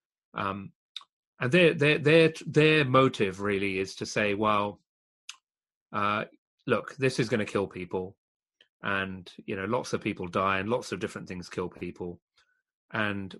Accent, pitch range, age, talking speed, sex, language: British, 100-120 Hz, 30-49, 155 wpm, male, English